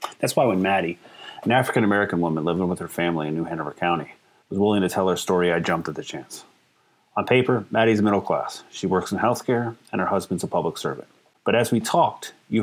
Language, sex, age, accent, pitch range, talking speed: English, male, 30-49, American, 95-120 Hz, 220 wpm